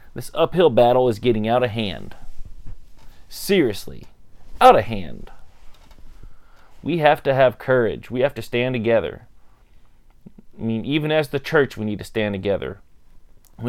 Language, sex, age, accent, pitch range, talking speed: English, male, 30-49, American, 105-135 Hz, 150 wpm